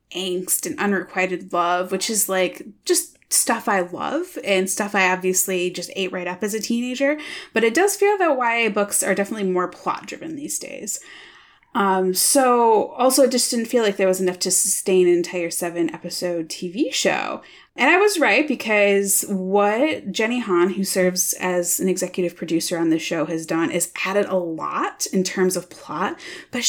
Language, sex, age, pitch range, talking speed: English, female, 20-39, 180-240 Hz, 185 wpm